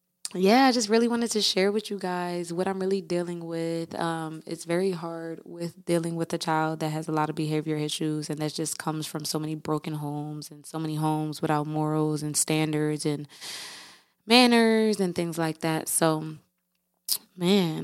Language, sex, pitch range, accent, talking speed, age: English, female, 160-175 Hz, American, 190 wpm, 20-39